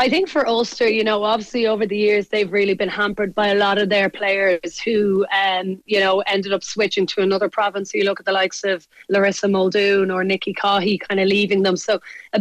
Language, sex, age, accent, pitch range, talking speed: English, female, 30-49, Irish, 195-220 Hz, 225 wpm